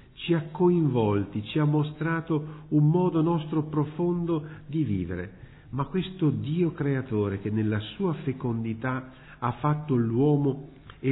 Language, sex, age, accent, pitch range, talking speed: Italian, male, 50-69, native, 110-155 Hz, 130 wpm